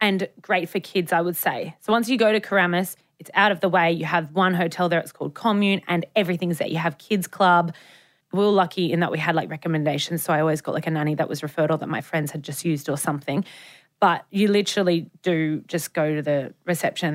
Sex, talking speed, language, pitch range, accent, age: female, 245 wpm, English, 155-180 Hz, Australian, 20-39